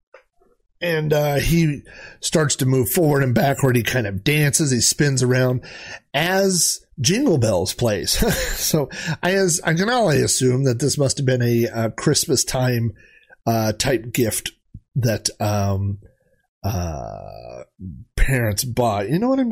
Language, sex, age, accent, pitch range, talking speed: English, male, 40-59, American, 105-155 Hz, 150 wpm